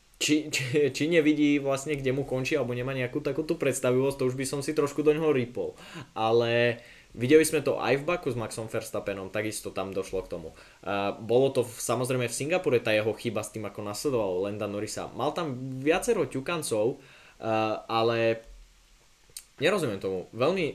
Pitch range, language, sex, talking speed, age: 110-140 Hz, Slovak, male, 170 wpm, 20-39